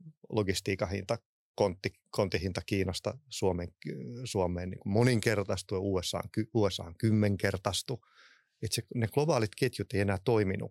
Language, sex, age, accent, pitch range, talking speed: Finnish, male, 30-49, native, 95-120 Hz, 105 wpm